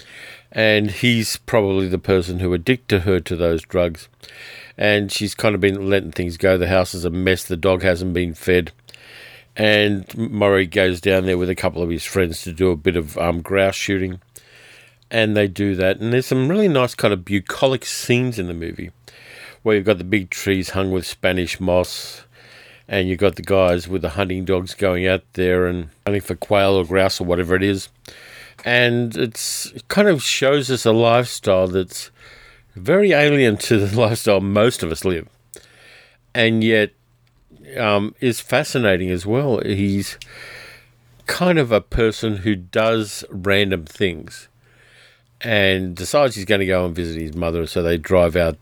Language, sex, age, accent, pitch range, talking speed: English, male, 50-69, Australian, 90-110 Hz, 180 wpm